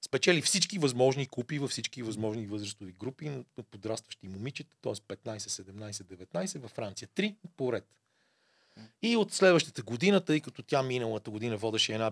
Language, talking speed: Bulgarian, 155 wpm